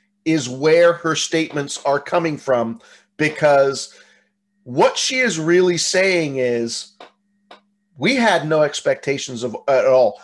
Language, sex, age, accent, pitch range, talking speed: English, male, 40-59, American, 150-200 Hz, 115 wpm